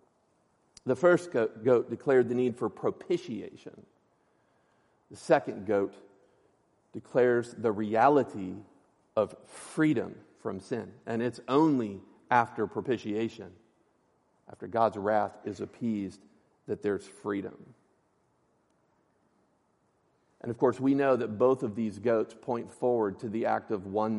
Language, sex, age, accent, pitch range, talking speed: English, male, 50-69, American, 105-130 Hz, 120 wpm